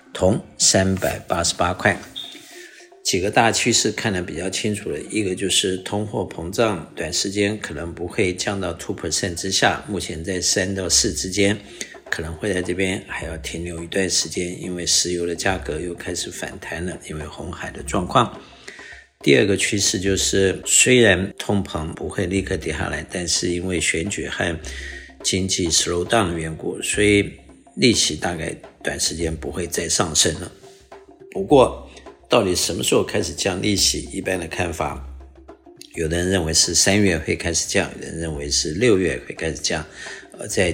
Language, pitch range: Chinese, 85-100 Hz